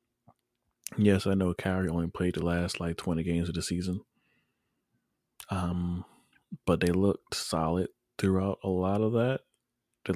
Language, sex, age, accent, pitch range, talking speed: English, male, 20-39, American, 85-95 Hz, 150 wpm